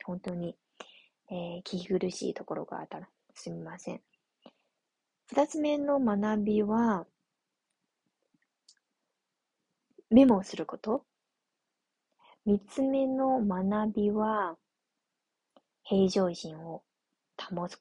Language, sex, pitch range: Japanese, female, 180-240 Hz